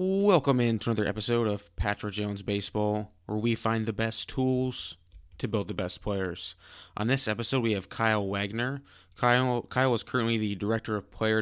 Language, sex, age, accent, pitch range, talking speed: English, male, 20-39, American, 100-110 Hz, 185 wpm